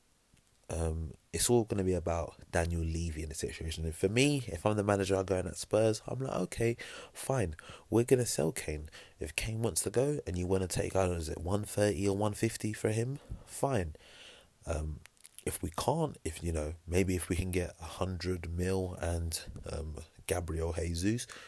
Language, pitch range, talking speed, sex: English, 80-95 Hz, 195 wpm, male